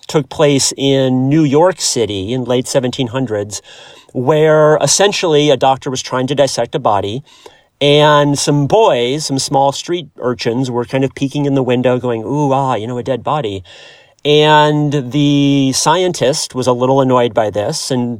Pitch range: 125-150 Hz